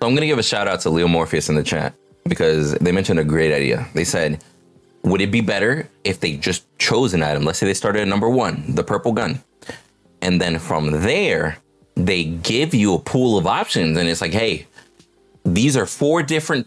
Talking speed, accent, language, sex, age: 215 wpm, American, English, male, 30-49